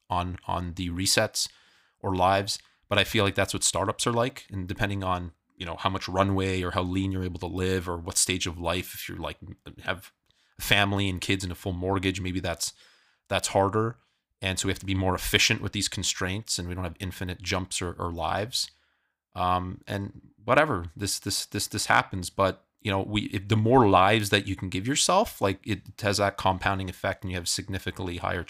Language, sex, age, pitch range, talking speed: English, male, 30-49, 90-100 Hz, 220 wpm